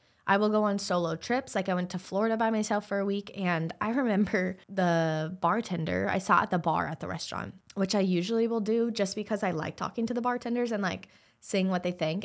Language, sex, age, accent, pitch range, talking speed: English, female, 20-39, American, 170-210 Hz, 235 wpm